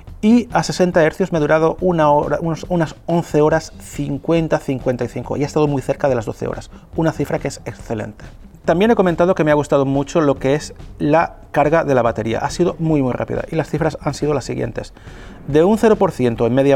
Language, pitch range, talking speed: Spanish, 125-170 Hz, 220 wpm